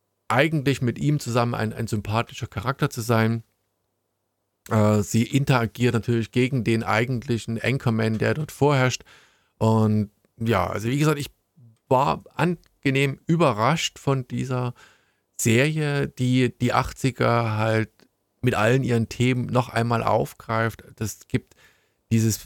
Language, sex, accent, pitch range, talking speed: German, male, German, 110-125 Hz, 125 wpm